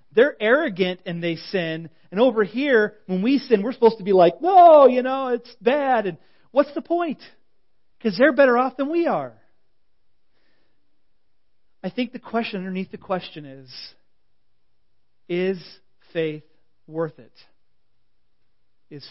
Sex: male